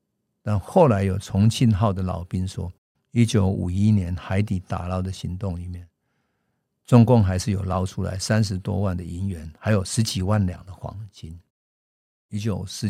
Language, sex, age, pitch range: Chinese, male, 50-69, 95-120 Hz